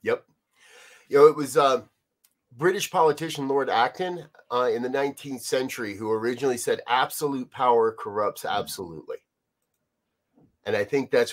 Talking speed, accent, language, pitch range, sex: 145 wpm, American, English, 125-165 Hz, male